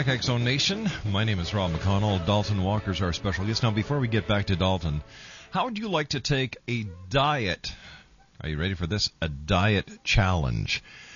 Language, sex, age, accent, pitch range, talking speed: English, male, 50-69, American, 90-120 Hz, 185 wpm